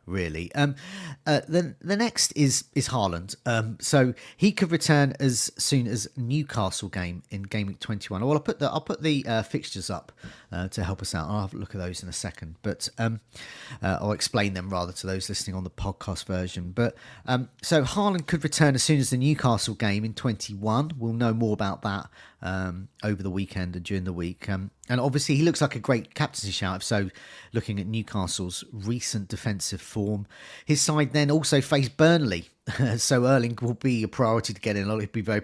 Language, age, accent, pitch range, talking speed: English, 40-59, British, 100-135 Hz, 215 wpm